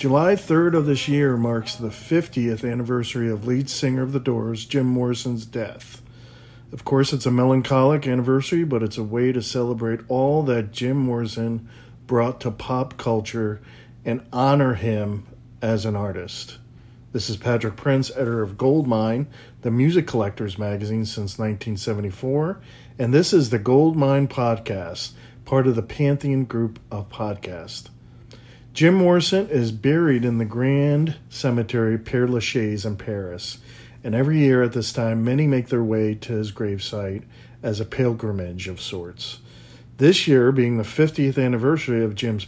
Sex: male